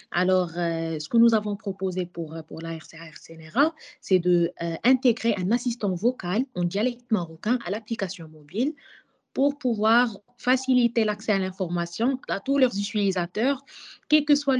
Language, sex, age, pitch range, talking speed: French, female, 20-39, 185-250 Hz, 150 wpm